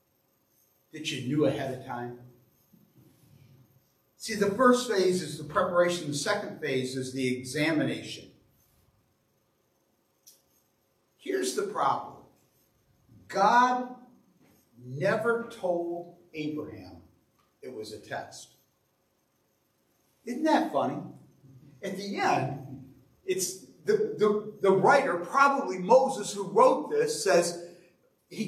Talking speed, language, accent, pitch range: 100 wpm, English, American, 150-220 Hz